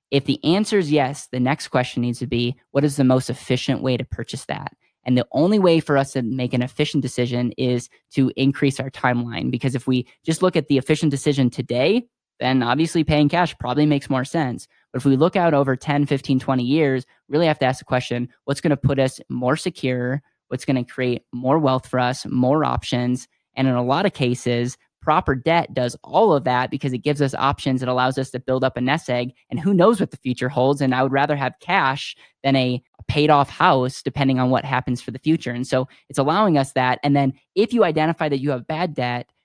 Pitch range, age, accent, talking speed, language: 125-145 Hz, 10-29, American, 235 wpm, English